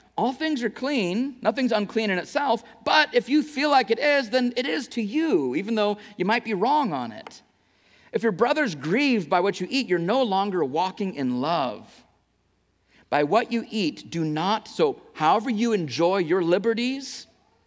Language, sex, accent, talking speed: English, male, American, 185 wpm